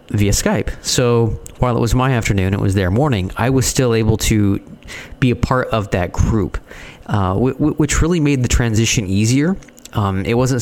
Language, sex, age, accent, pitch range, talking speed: English, male, 30-49, American, 95-120 Hz, 185 wpm